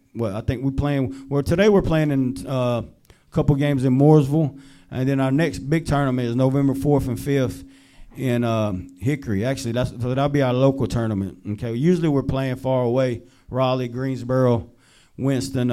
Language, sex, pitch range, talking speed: English, male, 120-140 Hz, 180 wpm